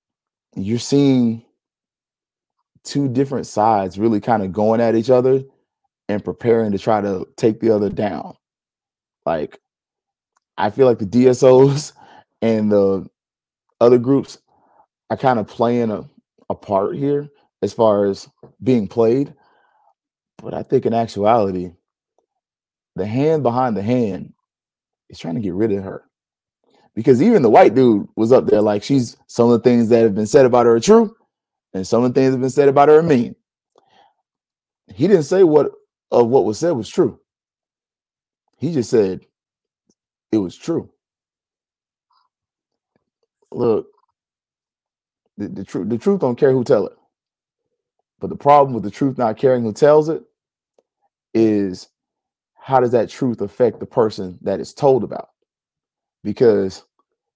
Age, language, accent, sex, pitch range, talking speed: 30-49, English, American, male, 110-150 Hz, 155 wpm